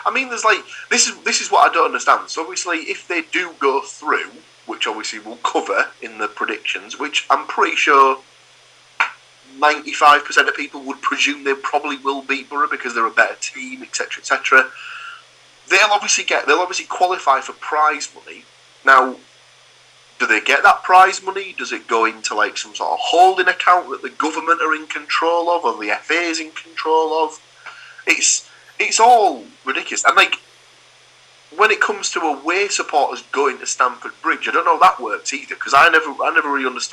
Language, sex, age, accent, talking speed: English, male, 30-49, British, 190 wpm